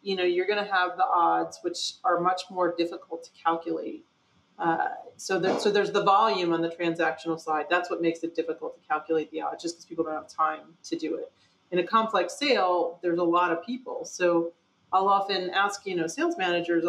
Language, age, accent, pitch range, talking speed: English, 30-49, American, 165-205 Hz, 215 wpm